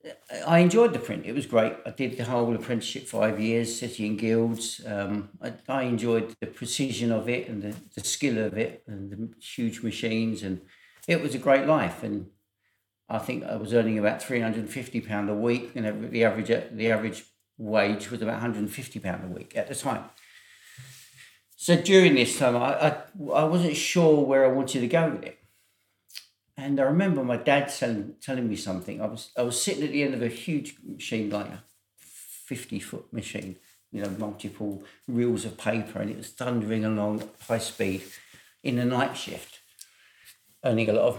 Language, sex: English, male